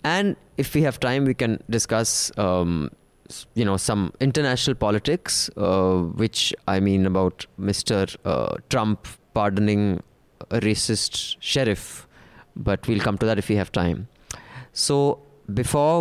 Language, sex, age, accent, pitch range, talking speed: English, male, 20-39, Indian, 105-135 Hz, 140 wpm